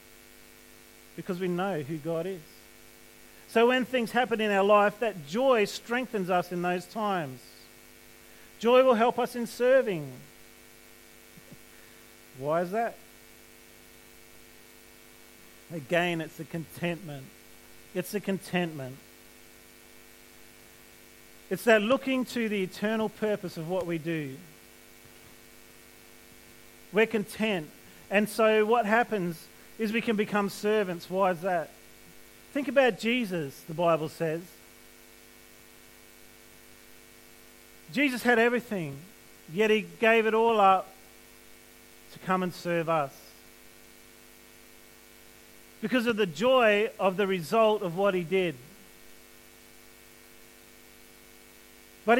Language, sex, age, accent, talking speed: English, male, 40-59, Australian, 105 wpm